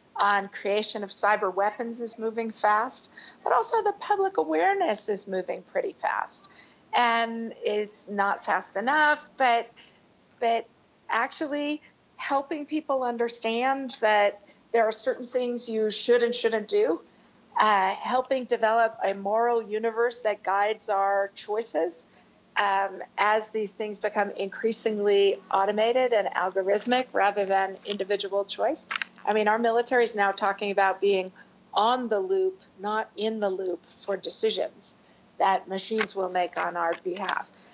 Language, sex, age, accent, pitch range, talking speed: English, female, 50-69, American, 200-240 Hz, 135 wpm